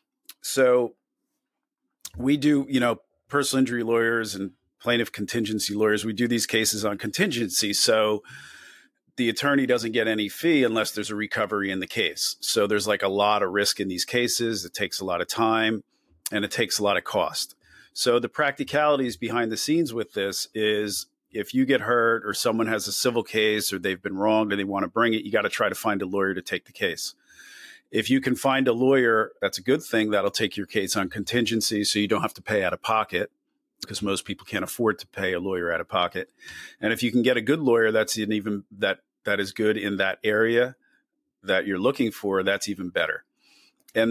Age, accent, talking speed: 40-59, American, 215 wpm